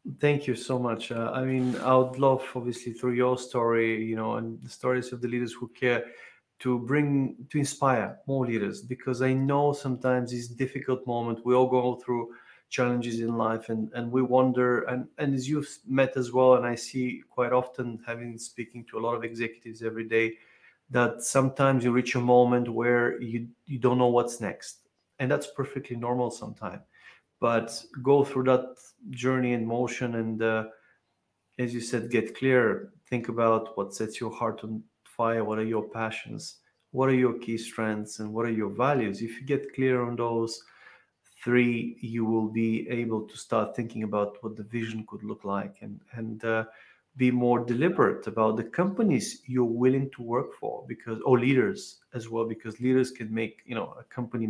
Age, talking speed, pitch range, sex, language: 30-49, 190 wpm, 115-130 Hz, male, English